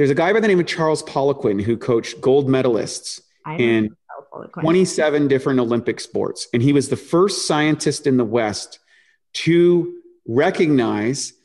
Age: 30-49